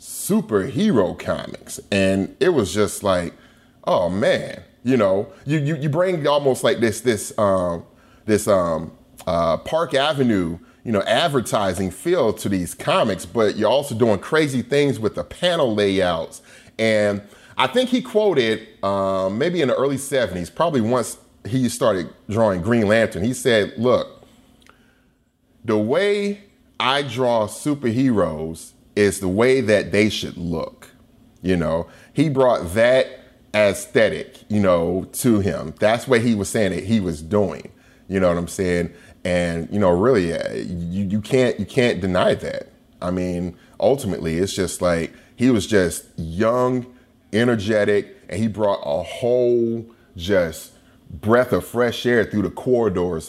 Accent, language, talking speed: American, English, 150 wpm